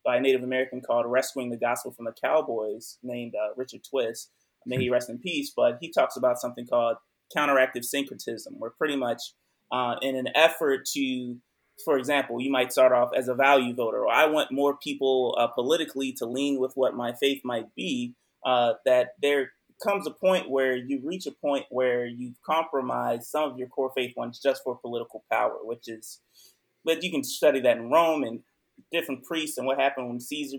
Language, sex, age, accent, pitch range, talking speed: English, male, 30-49, American, 125-140 Hz, 200 wpm